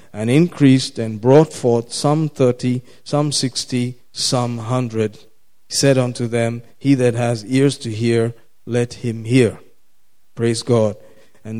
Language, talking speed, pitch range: English, 140 wpm, 125-145 Hz